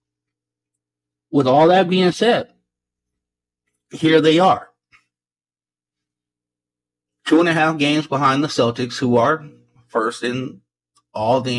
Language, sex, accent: English, male, American